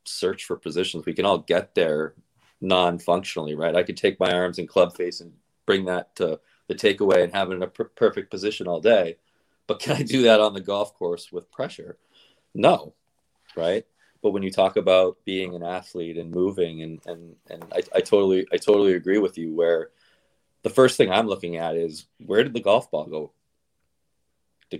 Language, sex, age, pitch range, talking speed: English, male, 20-39, 85-115 Hz, 205 wpm